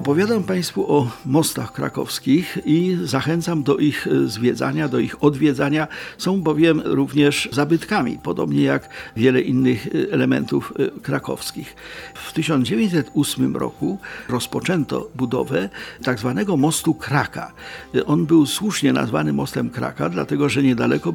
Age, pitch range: 50-69, 125-155 Hz